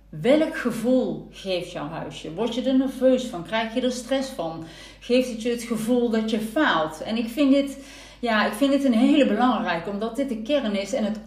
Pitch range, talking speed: 205-265 Hz, 220 wpm